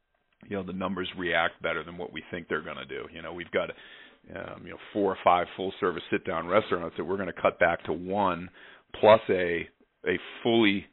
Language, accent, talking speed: English, American, 215 wpm